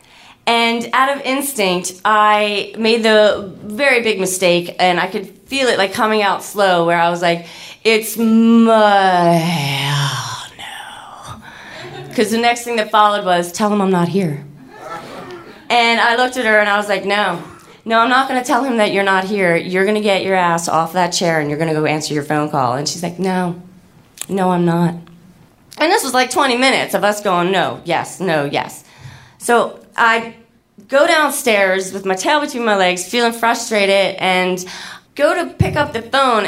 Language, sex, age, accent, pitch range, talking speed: English, female, 30-49, American, 175-230 Hz, 190 wpm